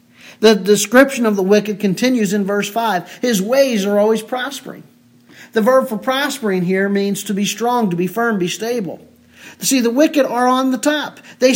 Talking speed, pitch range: 185 wpm, 210-265 Hz